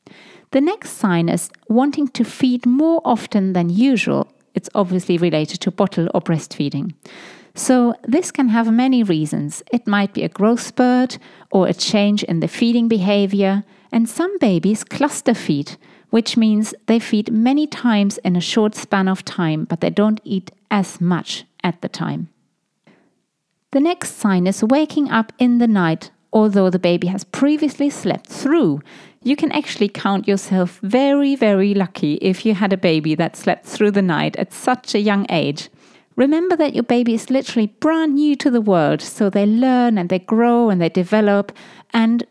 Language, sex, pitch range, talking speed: English, female, 185-250 Hz, 175 wpm